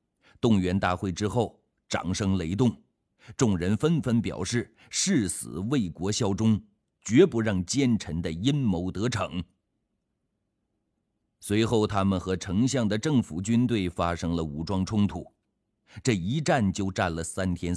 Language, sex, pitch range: Chinese, male, 90-115 Hz